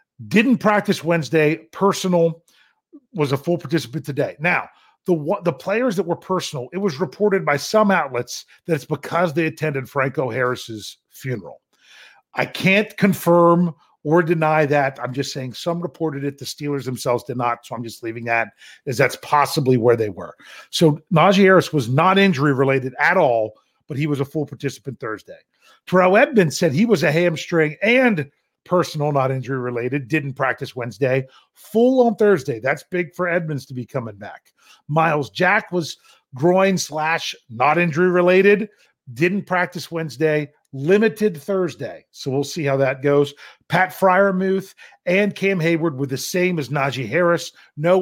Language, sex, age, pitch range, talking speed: English, male, 40-59, 135-180 Hz, 165 wpm